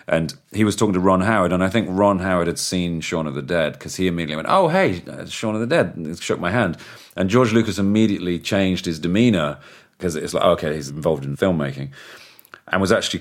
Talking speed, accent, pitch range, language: 230 wpm, British, 75-100 Hz, English